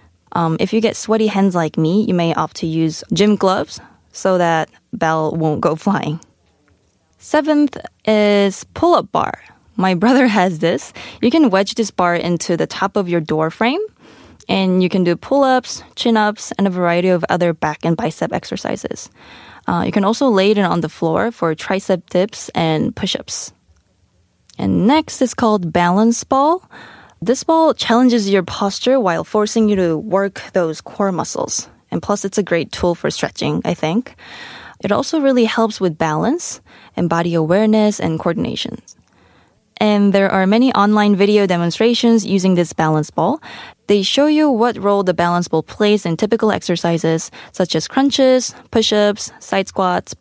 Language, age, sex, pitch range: Korean, 20-39, female, 170-225 Hz